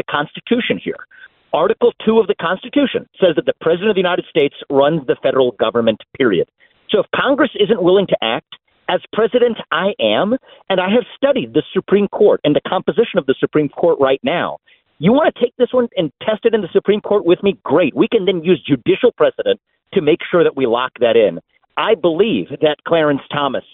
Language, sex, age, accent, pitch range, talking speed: English, male, 50-69, American, 155-240 Hz, 210 wpm